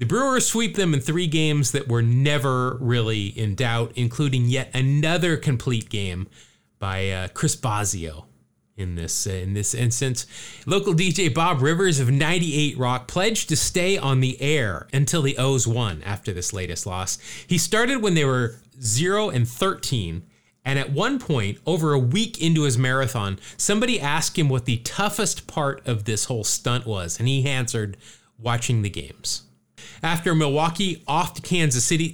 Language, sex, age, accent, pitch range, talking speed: English, male, 30-49, American, 110-155 Hz, 165 wpm